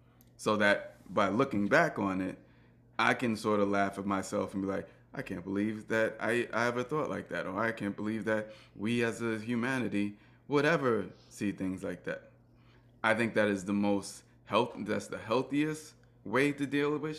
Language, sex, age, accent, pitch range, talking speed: English, male, 20-39, American, 100-120 Hz, 195 wpm